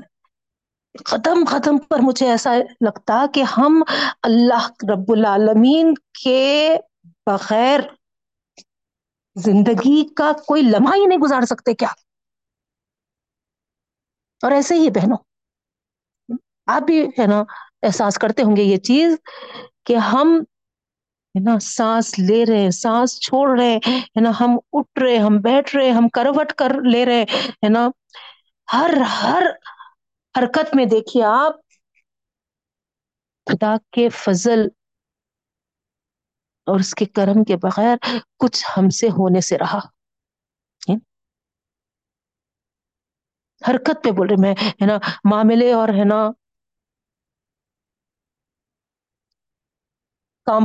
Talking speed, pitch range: 105 wpm, 215-275 Hz